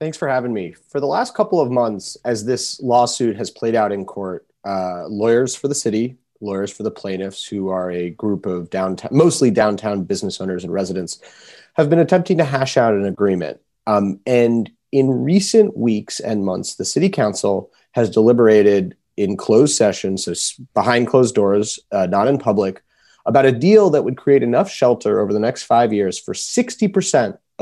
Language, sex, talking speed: English, male, 185 wpm